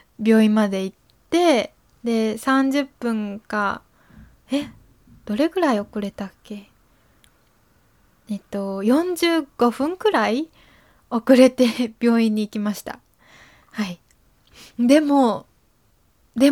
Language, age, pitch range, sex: Japanese, 20-39, 210-285 Hz, female